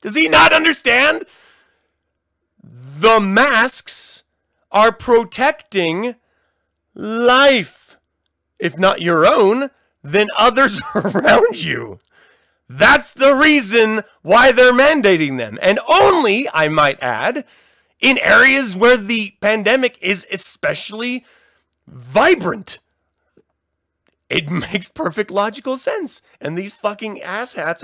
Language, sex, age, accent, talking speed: English, male, 30-49, American, 100 wpm